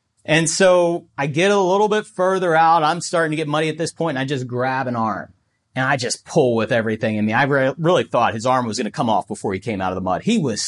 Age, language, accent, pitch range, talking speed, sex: 30-49, English, American, 115-160 Hz, 285 wpm, male